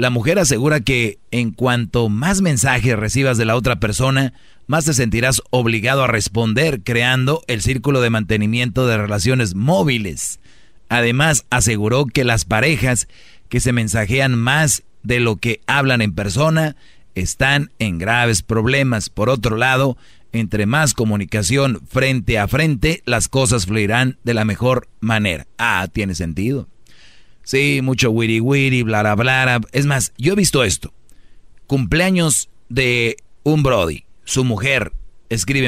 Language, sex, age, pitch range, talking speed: Spanish, male, 40-59, 115-135 Hz, 140 wpm